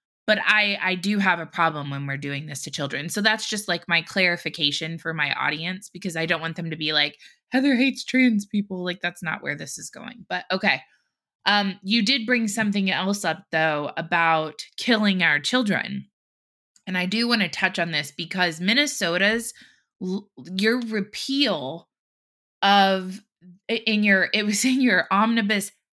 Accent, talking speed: American, 175 wpm